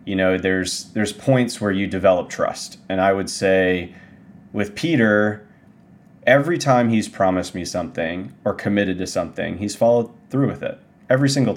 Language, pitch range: English, 95-105 Hz